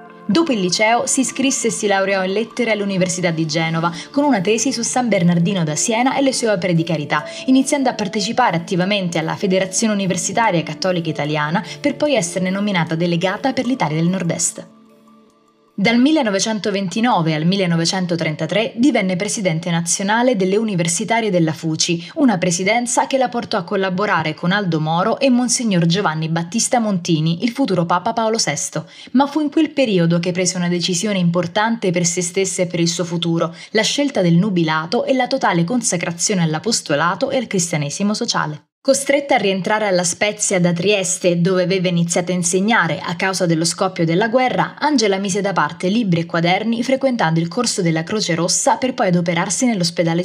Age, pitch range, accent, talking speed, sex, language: 20-39, 170-230 Hz, native, 170 wpm, female, Italian